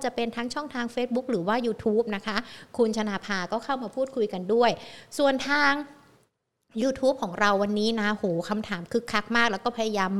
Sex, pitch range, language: female, 210-255 Hz, Thai